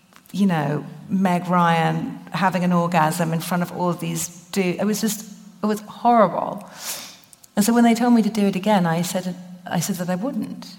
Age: 40-59